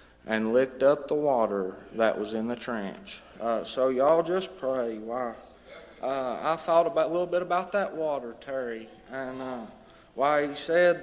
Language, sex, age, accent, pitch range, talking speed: English, male, 30-49, American, 140-180 Hz, 180 wpm